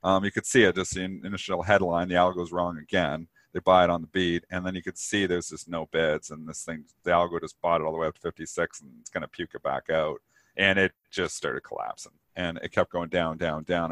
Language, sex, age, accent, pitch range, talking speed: English, male, 40-59, American, 90-110 Hz, 265 wpm